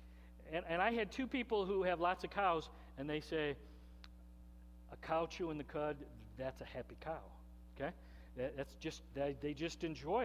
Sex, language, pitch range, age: male, English, 140-215 Hz, 50-69